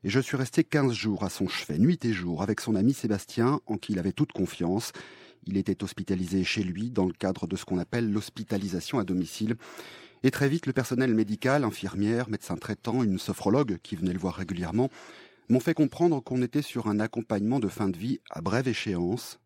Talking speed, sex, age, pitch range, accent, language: 210 wpm, male, 30-49, 95-130 Hz, French, French